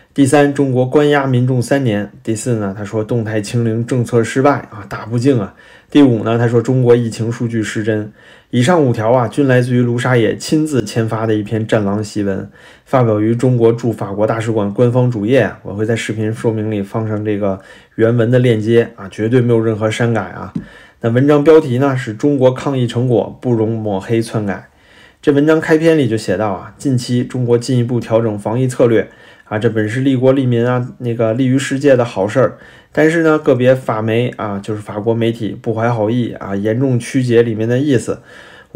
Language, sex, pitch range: Chinese, male, 110-130 Hz